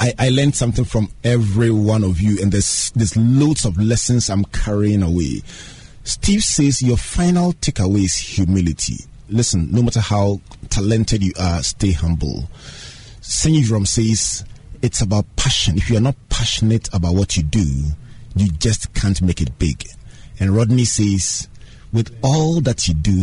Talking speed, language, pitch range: 160 wpm, English, 95-125 Hz